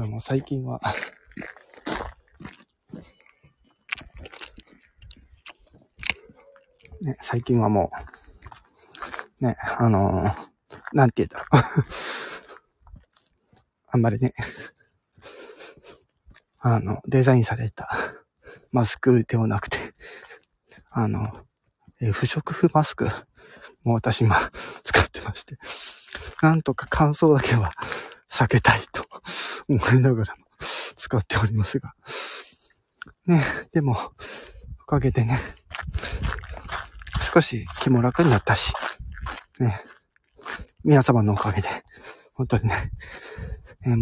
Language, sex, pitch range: Japanese, male, 105-130 Hz